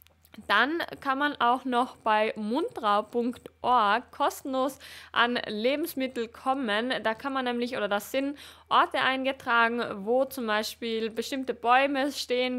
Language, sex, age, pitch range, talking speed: German, female, 20-39, 215-260 Hz, 125 wpm